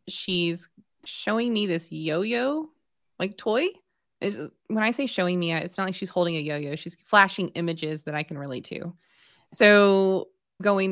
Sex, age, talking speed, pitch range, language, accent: female, 20-39, 165 wpm, 160-195 Hz, English, American